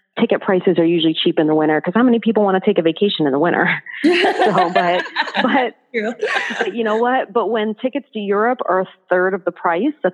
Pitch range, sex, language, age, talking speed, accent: 175-230 Hz, female, English, 40-59, 225 wpm, American